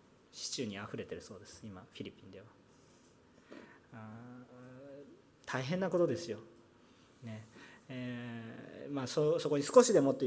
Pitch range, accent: 120-155 Hz, native